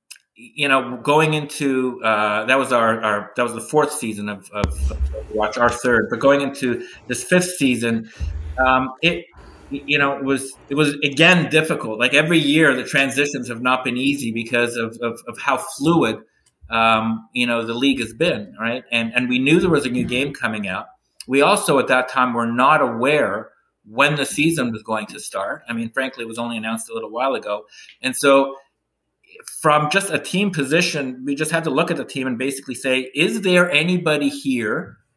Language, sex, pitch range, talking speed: English, male, 120-150 Hz, 200 wpm